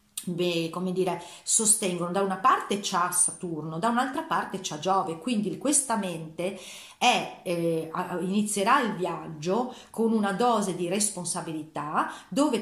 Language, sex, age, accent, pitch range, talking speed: Italian, female, 40-59, native, 180-245 Hz, 135 wpm